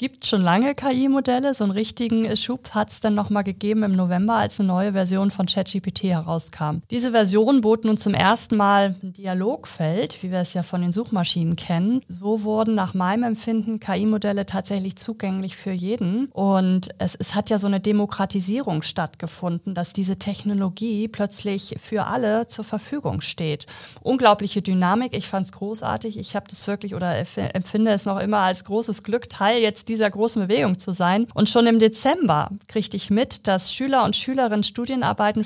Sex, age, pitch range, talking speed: female, 30-49, 185-220 Hz, 180 wpm